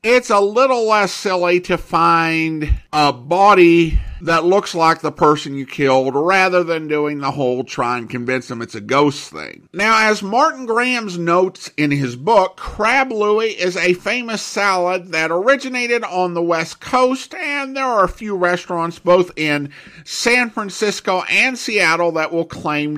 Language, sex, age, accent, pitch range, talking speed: English, male, 50-69, American, 145-210 Hz, 165 wpm